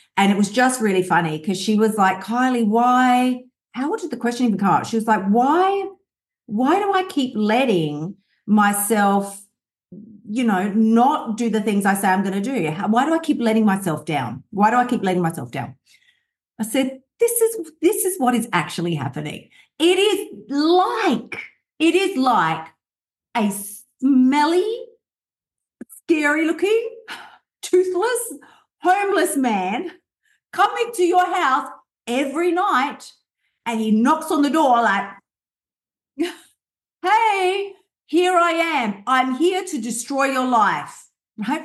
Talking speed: 145 wpm